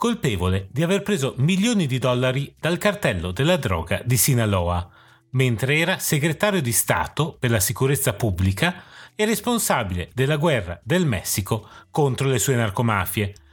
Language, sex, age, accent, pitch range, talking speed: Italian, male, 30-49, native, 105-170 Hz, 140 wpm